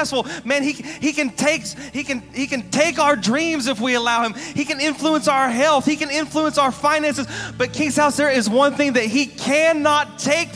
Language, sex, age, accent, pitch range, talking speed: English, male, 30-49, American, 255-300 Hz, 210 wpm